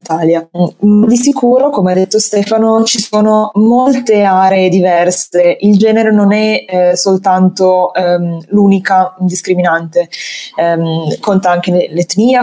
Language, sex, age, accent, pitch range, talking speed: Italian, female, 20-39, native, 175-210 Hz, 120 wpm